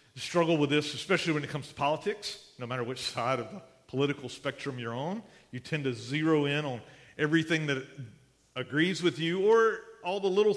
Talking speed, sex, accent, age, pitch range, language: 195 wpm, male, American, 40-59, 115-155 Hz, English